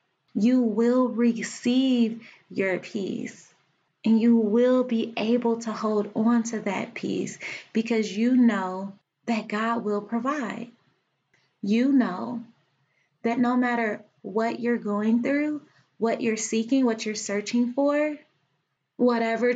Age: 20-39